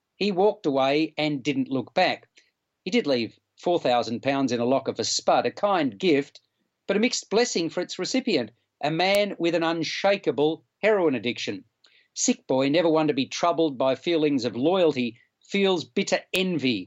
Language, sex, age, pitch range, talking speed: English, male, 40-59, 140-175 Hz, 170 wpm